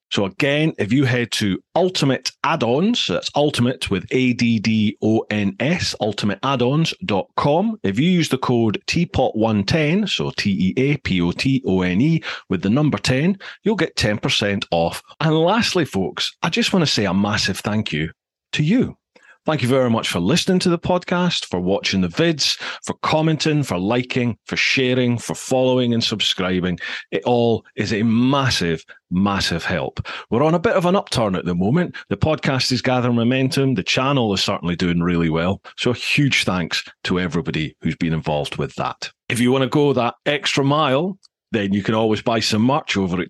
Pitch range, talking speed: 95-145 Hz, 170 wpm